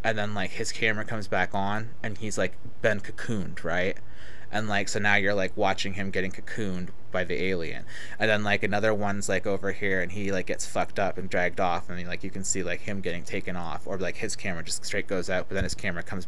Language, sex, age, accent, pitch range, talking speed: English, male, 20-39, American, 95-115 Hz, 245 wpm